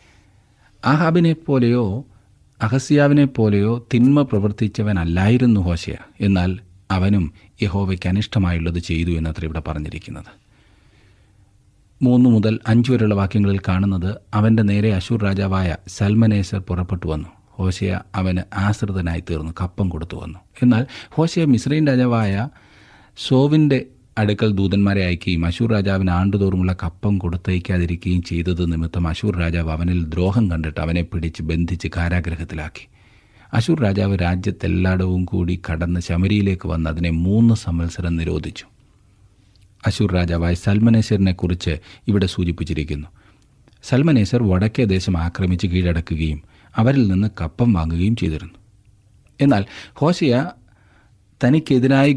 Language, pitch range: Malayalam, 90-110 Hz